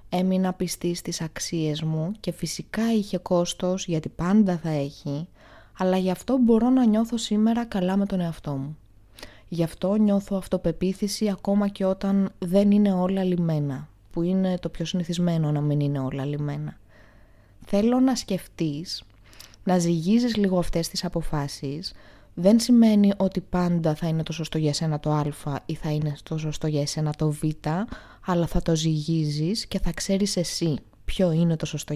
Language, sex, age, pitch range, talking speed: Greek, female, 20-39, 155-210 Hz, 165 wpm